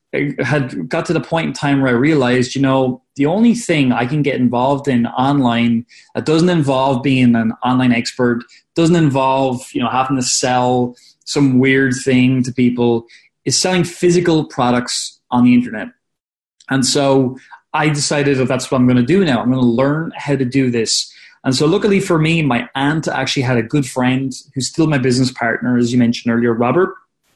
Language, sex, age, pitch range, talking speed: English, male, 20-39, 125-145 Hz, 195 wpm